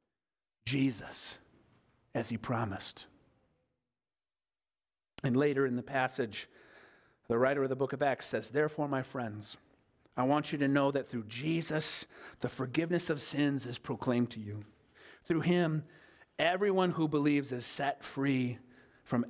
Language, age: English, 40-59